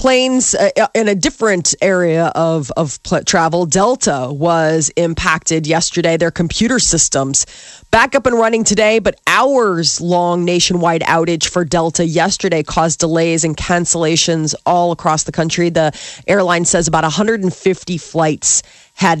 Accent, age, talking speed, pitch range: American, 30-49, 130 wpm, 165-195 Hz